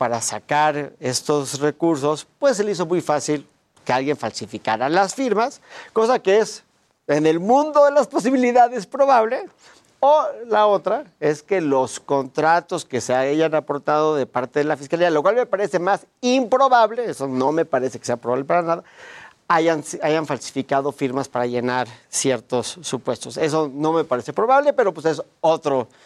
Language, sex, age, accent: Spanish, male, 40-59, Mexican